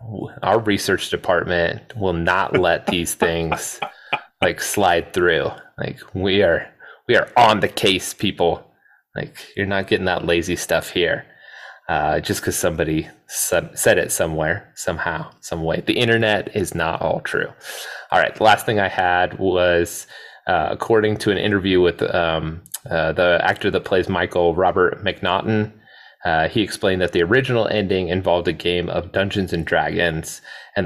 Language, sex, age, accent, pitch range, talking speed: English, male, 20-39, American, 80-100 Hz, 160 wpm